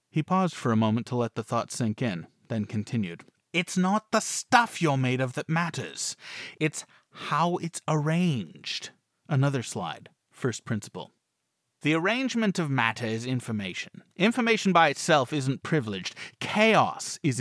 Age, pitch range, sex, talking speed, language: 30-49, 130-180 Hz, male, 150 wpm, English